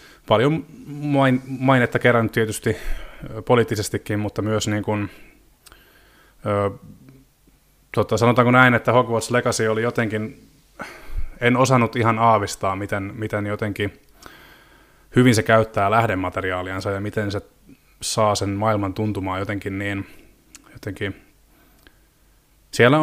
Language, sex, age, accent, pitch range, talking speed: Finnish, male, 20-39, native, 100-120 Hz, 90 wpm